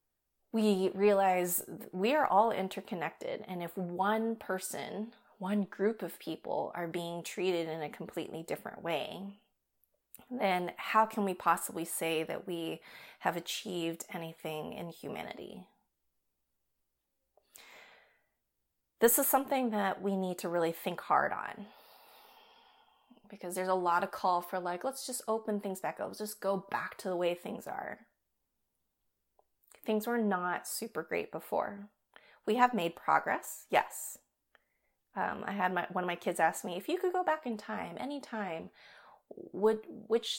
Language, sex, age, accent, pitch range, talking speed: English, female, 20-39, American, 175-220 Hz, 145 wpm